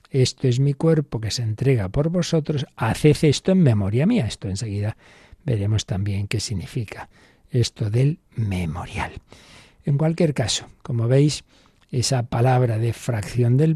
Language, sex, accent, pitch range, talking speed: Spanish, male, Spanish, 105-140 Hz, 145 wpm